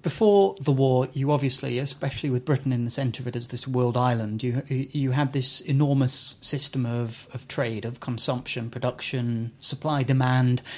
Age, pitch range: 30-49, 125-145 Hz